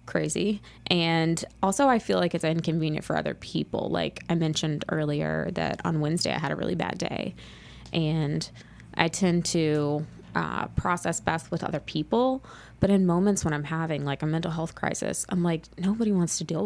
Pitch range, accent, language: 155-185 Hz, American, English